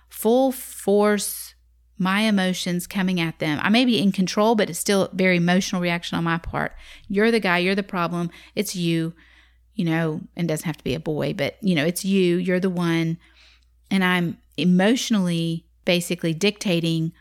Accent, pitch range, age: American, 165-195 Hz, 40-59